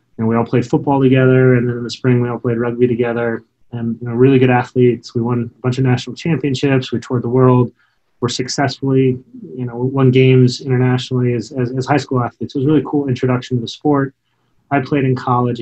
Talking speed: 230 wpm